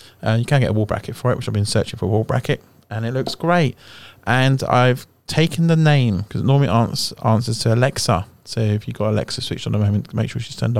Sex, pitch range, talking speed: male, 105-130 Hz, 255 wpm